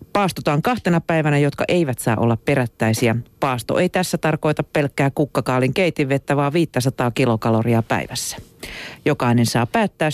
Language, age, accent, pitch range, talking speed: Finnish, 40-59, native, 125-165 Hz, 130 wpm